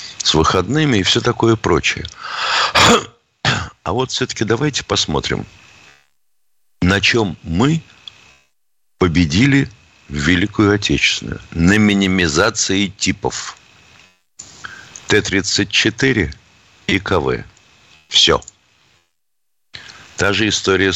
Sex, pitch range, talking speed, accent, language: male, 85-115 Hz, 75 wpm, native, Russian